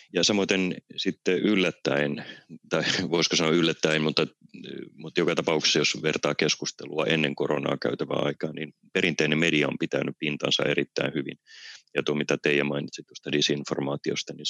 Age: 30-49